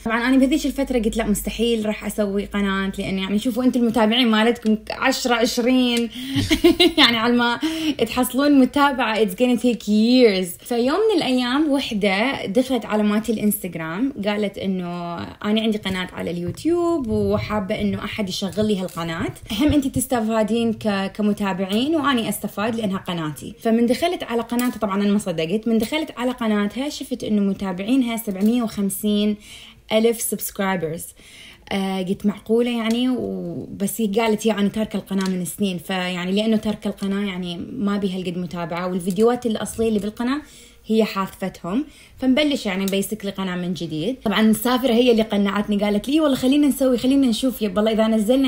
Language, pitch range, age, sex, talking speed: Arabic, 195-250 Hz, 20-39, female, 145 wpm